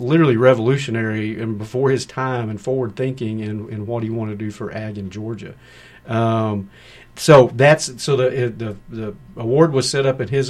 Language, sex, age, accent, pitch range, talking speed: English, male, 50-69, American, 115-130 Hz, 185 wpm